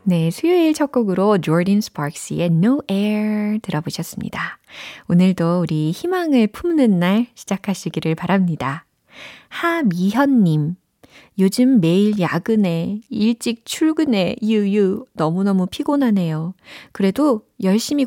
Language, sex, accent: Korean, female, native